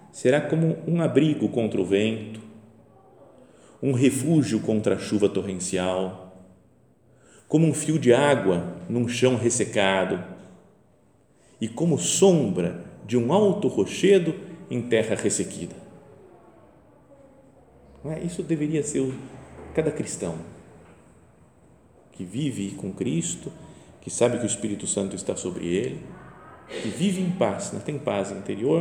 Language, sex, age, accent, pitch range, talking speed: Portuguese, male, 40-59, Brazilian, 90-145 Hz, 125 wpm